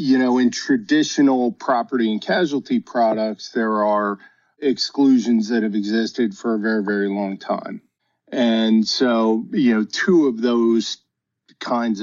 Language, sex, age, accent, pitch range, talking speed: English, male, 50-69, American, 105-125 Hz, 140 wpm